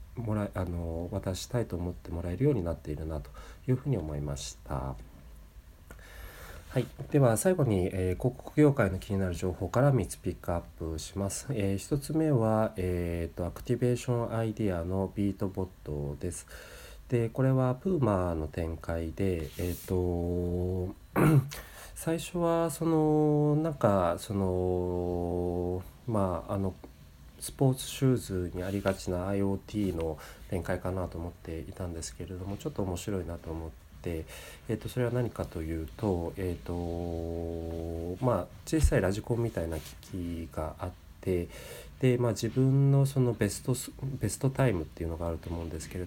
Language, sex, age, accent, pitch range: Japanese, male, 40-59, native, 85-115 Hz